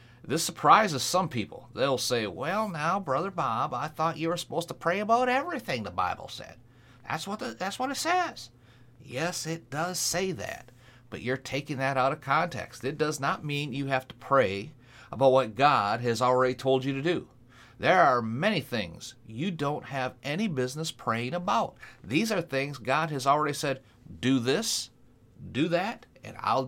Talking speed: 180 wpm